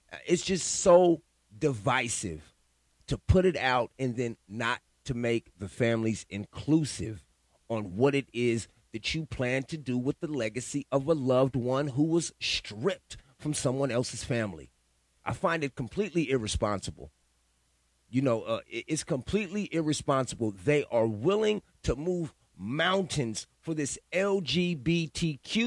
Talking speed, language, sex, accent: 140 wpm, English, male, American